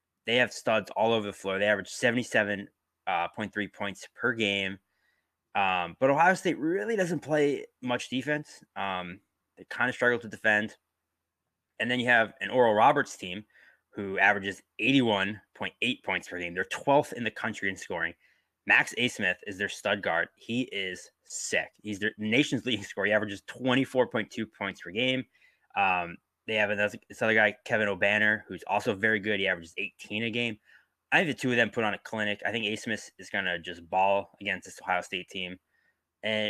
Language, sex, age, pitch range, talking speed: English, male, 20-39, 100-120 Hz, 185 wpm